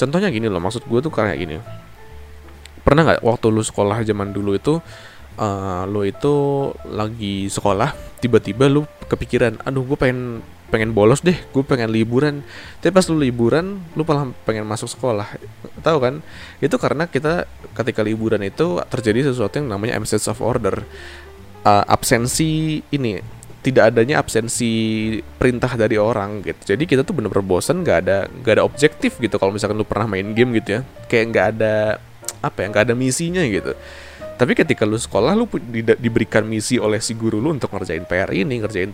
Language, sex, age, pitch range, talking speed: Indonesian, male, 20-39, 100-125 Hz, 170 wpm